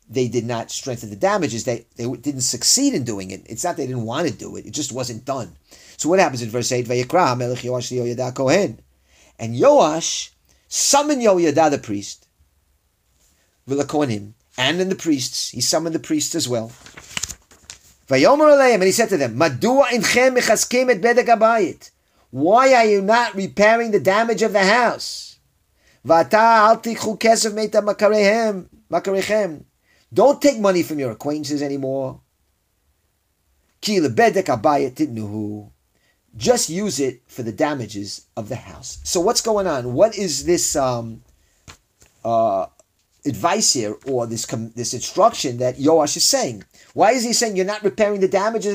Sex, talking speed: male, 130 wpm